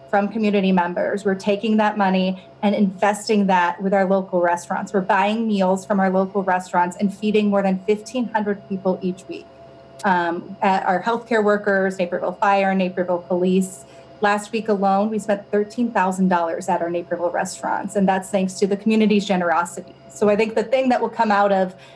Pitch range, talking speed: 180-210 Hz, 175 wpm